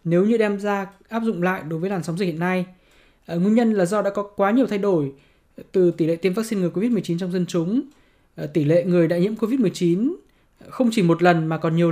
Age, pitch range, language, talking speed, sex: 20-39, 175-210 Hz, Vietnamese, 235 wpm, male